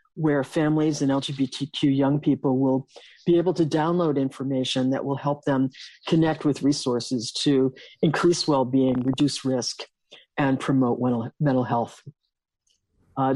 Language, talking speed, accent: English, 130 wpm, American